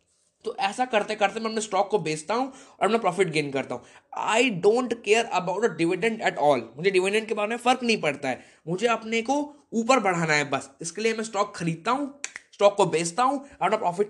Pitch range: 170-240 Hz